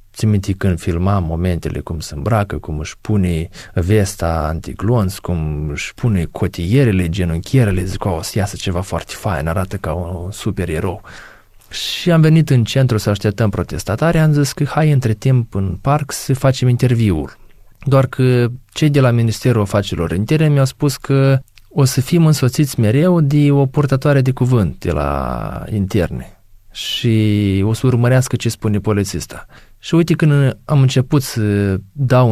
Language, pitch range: Romanian, 95-135 Hz